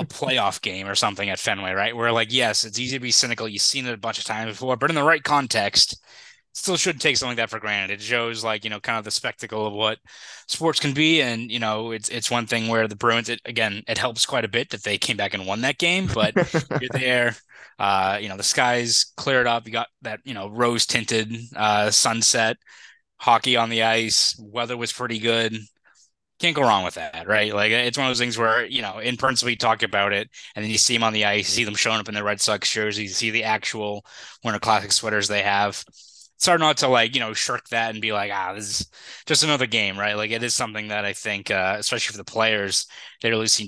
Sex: male